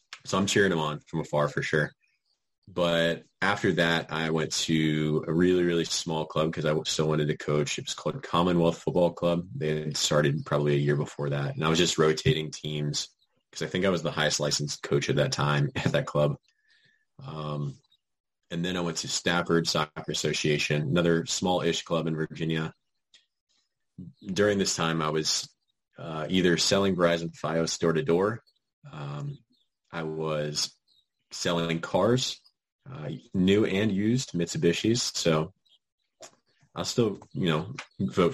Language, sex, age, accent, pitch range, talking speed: English, male, 30-49, American, 75-90 Hz, 160 wpm